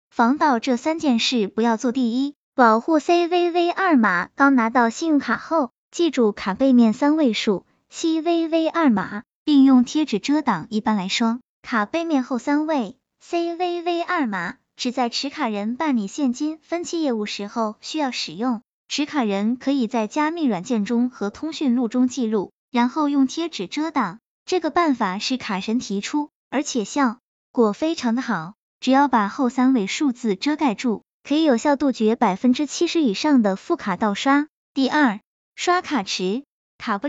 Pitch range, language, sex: 225-295 Hz, Chinese, male